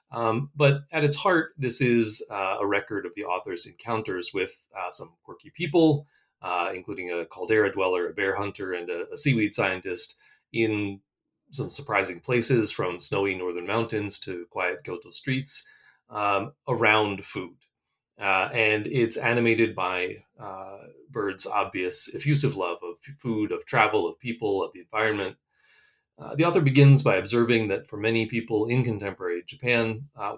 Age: 30-49